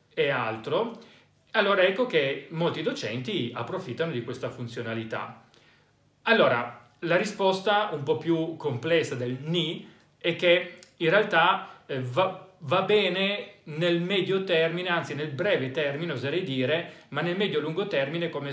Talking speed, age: 135 wpm, 40-59